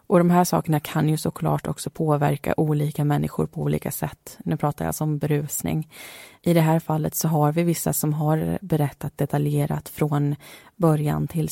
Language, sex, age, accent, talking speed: Swedish, female, 20-39, native, 180 wpm